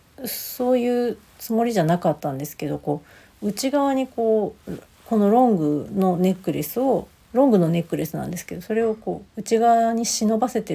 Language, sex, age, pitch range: Japanese, female, 40-59, 170-220 Hz